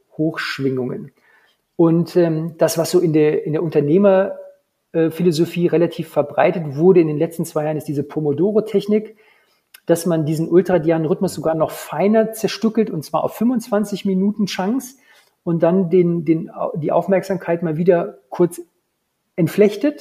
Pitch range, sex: 160-195 Hz, male